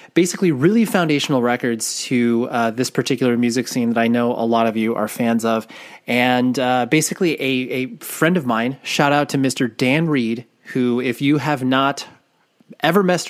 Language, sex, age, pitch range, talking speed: English, male, 30-49, 120-145 Hz, 185 wpm